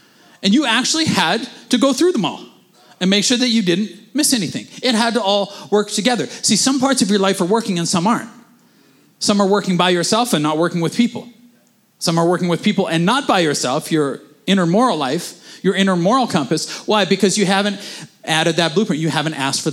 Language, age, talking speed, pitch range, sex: English, 30-49, 220 wpm, 155-210 Hz, male